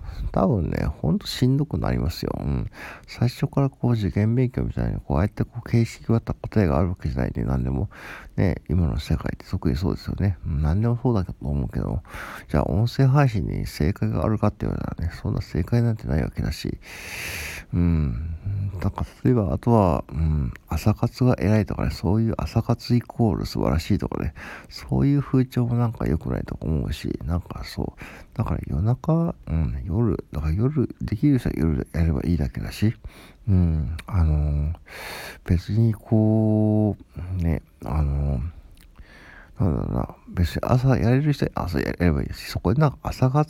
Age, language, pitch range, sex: 60-79, Japanese, 75-115 Hz, male